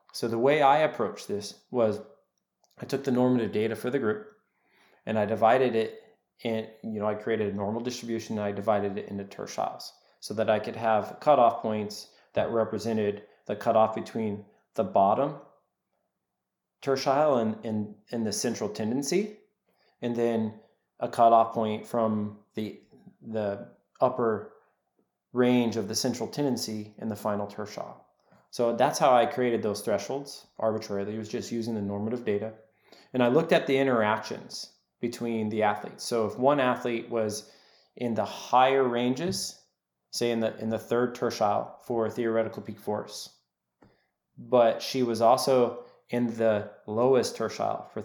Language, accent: English, American